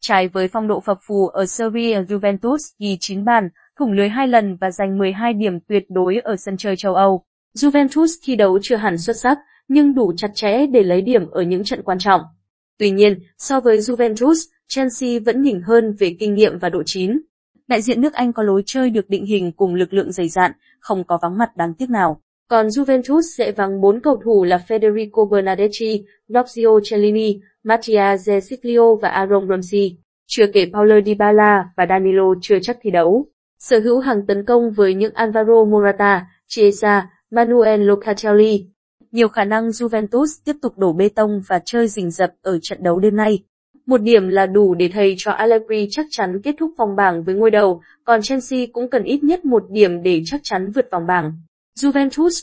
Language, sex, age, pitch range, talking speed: Vietnamese, female, 20-39, 195-235 Hz, 200 wpm